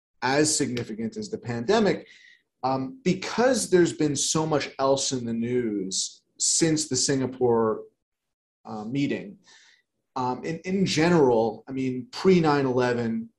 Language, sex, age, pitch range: English, male, 30-49, 120-150 Hz